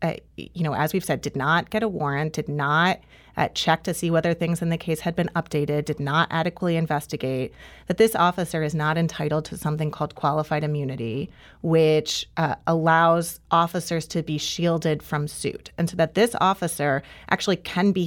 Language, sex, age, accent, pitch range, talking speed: English, female, 30-49, American, 155-195 Hz, 190 wpm